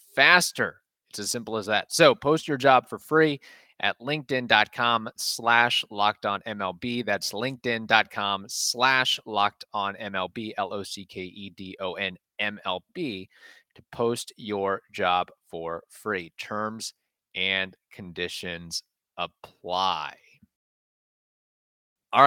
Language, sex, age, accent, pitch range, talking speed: English, male, 30-49, American, 100-125 Hz, 95 wpm